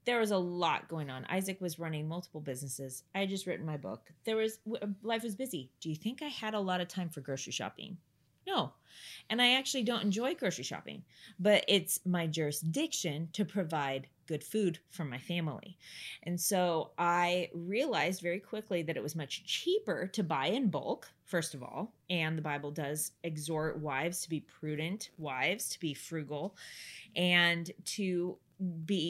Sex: female